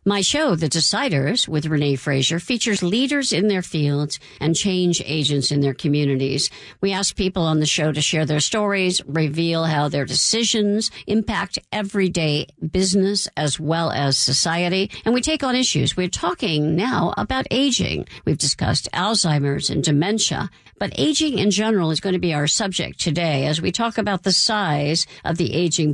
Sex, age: female, 50-69